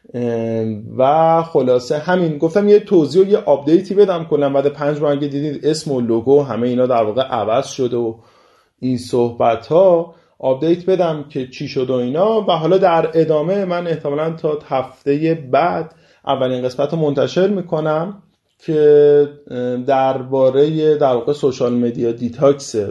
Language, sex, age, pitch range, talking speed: Persian, male, 30-49, 115-150 Hz, 145 wpm